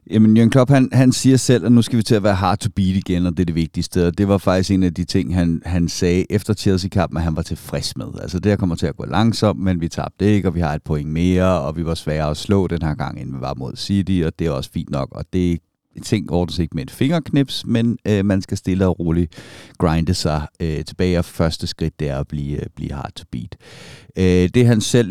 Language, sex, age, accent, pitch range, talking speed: Danish, male, 60-79, native, 85-105 Hz, 270 wpm